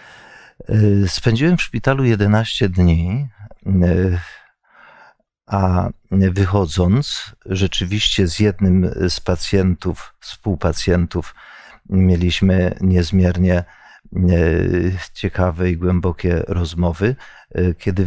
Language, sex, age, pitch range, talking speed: Polish, male, 50-69, 90-105 Hz, 65 wpm